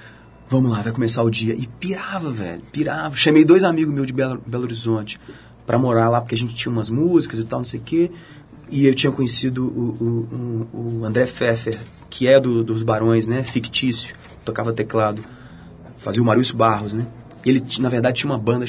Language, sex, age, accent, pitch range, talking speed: Portuguese, male, 30-49, Brazilian, 115-150 Hz, 200 wpm